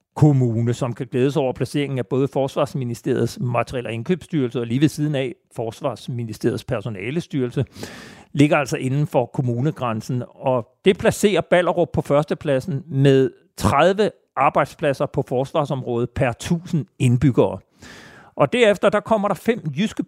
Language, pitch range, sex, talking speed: Danish, 125-165 Hz, male, 130 wpm